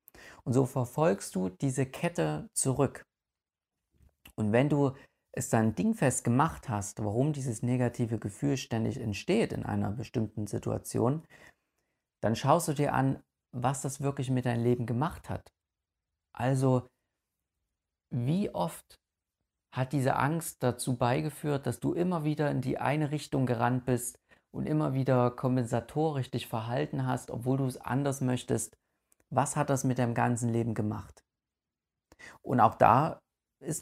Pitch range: 115-140 Hz